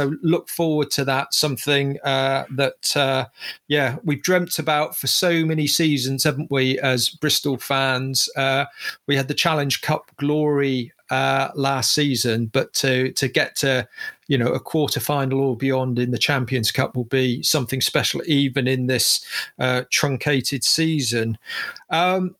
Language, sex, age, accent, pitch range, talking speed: English, male, 40-59, British, 140-185 Hz, 160 wpm